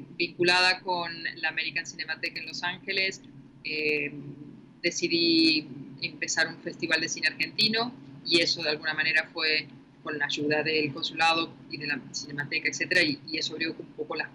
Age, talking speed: 20-39, 165 wpm